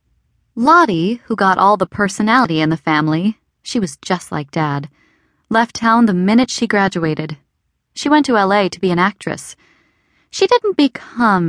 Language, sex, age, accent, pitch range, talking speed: English, female, 20-39, American, 170-230 Hz, 150 wpm